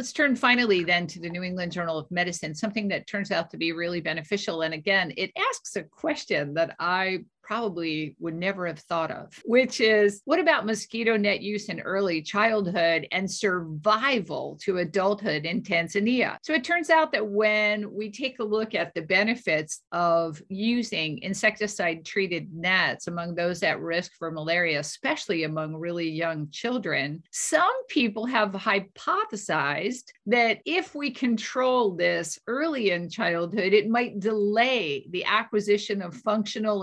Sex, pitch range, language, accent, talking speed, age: female, 175-220 Hz, English, American, 160 wpm, 50-69